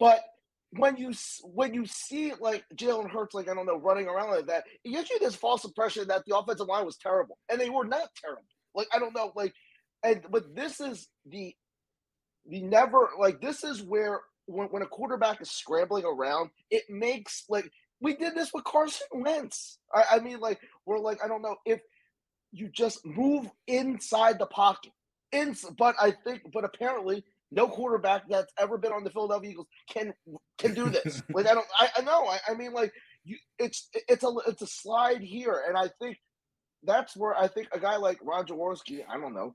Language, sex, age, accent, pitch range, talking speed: English, male, 30-49, American, 195-250 Hz, 205 wpm